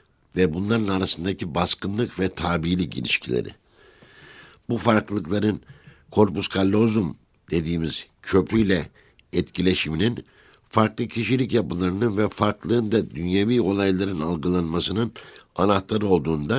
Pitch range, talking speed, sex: 85-110 Hz, 85 wpm, male